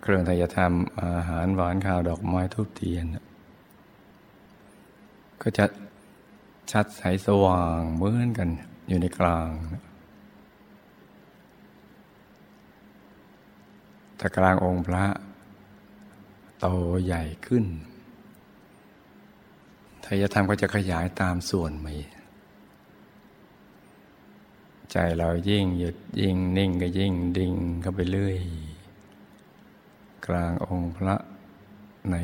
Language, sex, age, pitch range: Thai, male, 60-79, 85-100 Hz